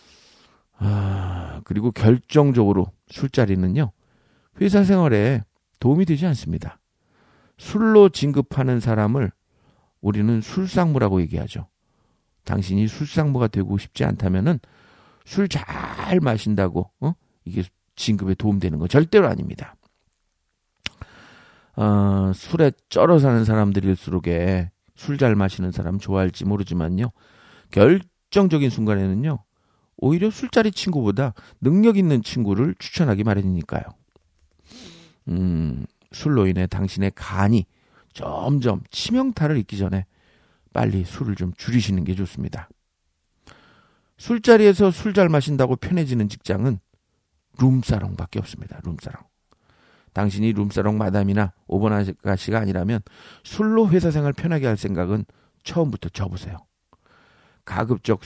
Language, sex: Korean, male